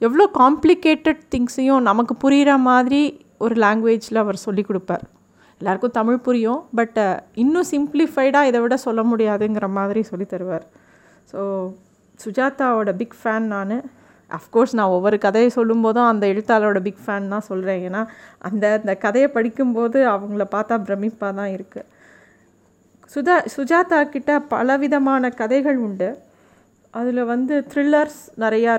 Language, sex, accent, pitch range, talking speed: Tamil, female, native, 210-260 Hz, 125 wpm